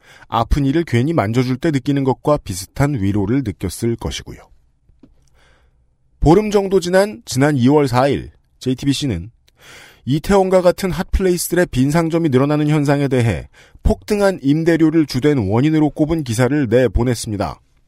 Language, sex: Korean, male